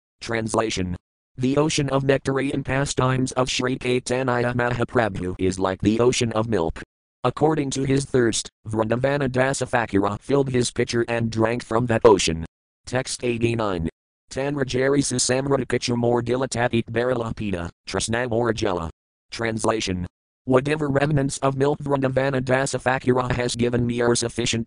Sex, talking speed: male, 120 wpm